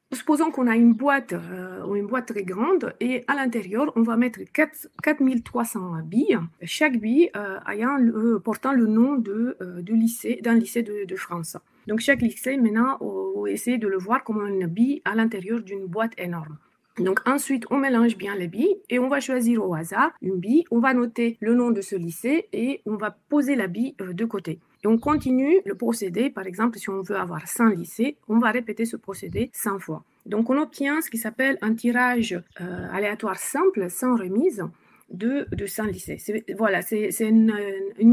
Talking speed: 200 wpm